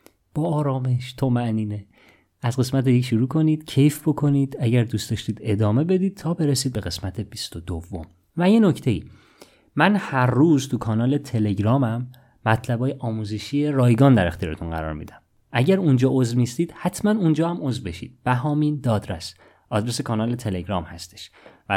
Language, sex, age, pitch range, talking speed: Persian, male, 30-49, 100-145 Hz, 150 wpm